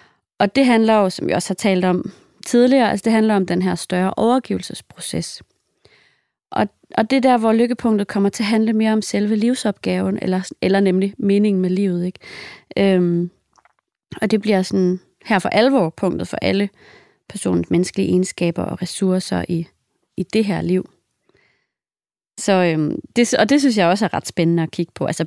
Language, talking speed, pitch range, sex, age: English, 185 wpm, 185-225 Hz, female, 30-49